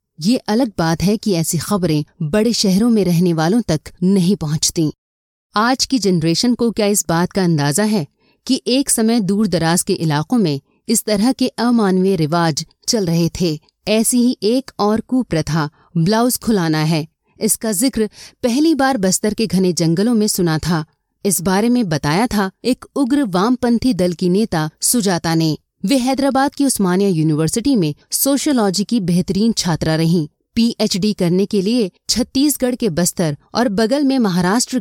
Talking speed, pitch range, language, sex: 160 wpm, 165-235 Hz, Hindi, female